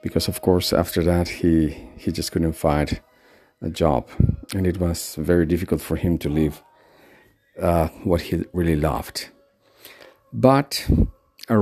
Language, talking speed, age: English, 145 wpm, 50-69